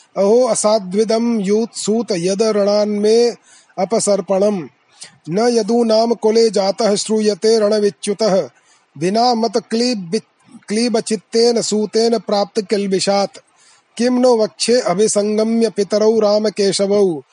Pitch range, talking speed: 195-225 Hz, 75 wpm